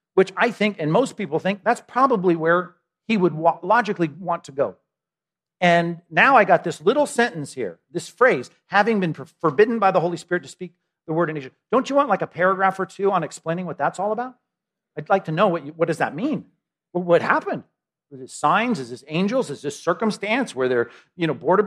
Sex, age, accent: male, 40-59, American